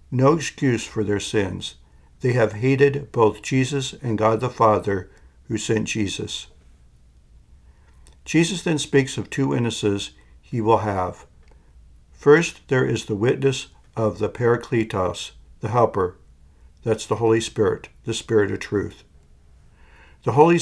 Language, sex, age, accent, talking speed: English, male, 60-79, American, 135 wpm